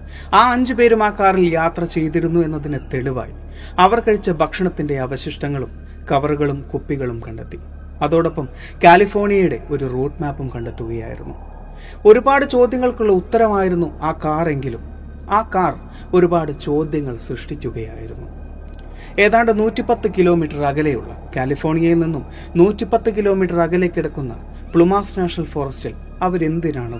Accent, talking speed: native, 100 wpm